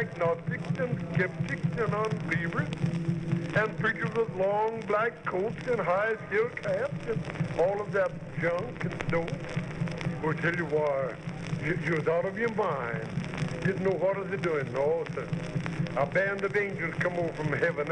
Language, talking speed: English, 165 wpm